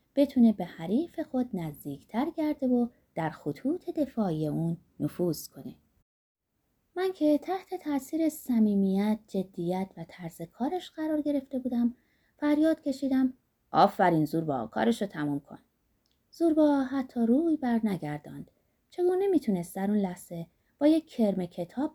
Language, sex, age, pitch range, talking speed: Persian, female, 30-49, 175-285 Hz, 125 wpm